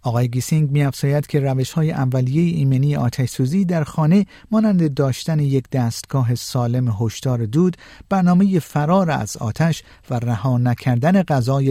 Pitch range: 120-160 Hz